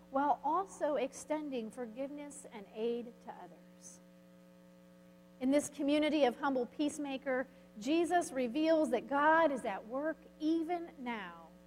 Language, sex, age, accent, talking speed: English, female, 40-59, American, 120 wpm